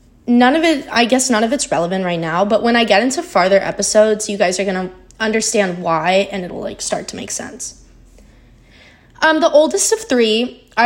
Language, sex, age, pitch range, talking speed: English, female, 20-39, 190-230 Hz, 210 wpm